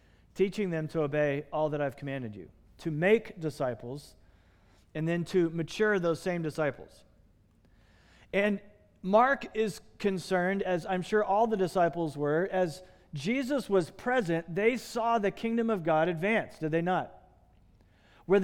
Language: English